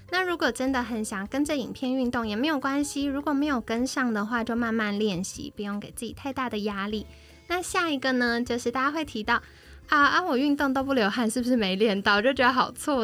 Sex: female